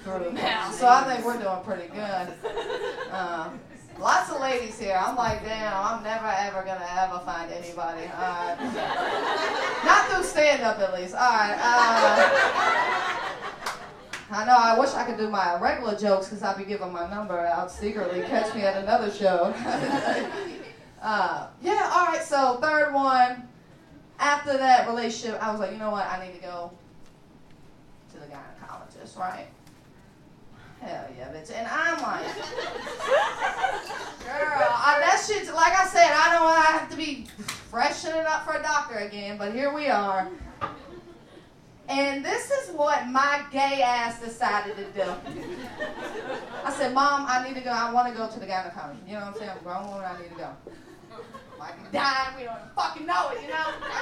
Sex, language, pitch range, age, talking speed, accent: female, English, 195-290 Hz, 20-39, 175 wpm, American